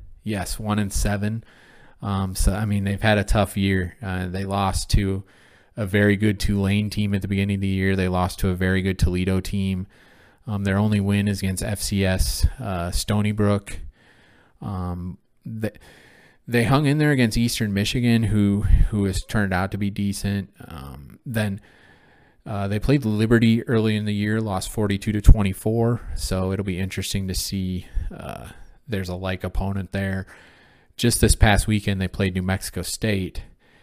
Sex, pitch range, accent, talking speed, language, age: male, 90-105 Hz, American, 175 wpm, English, 20-39